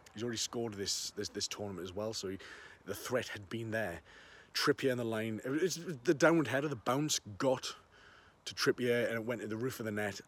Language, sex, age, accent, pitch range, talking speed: English, male, 30-49, British, 105-130 Hz, 215 wpm